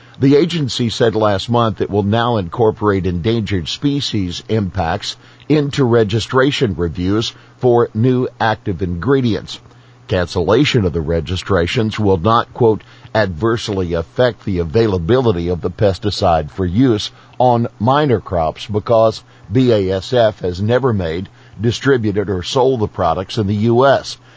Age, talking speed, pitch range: 50-69, 125 wpm, 95-125 Hz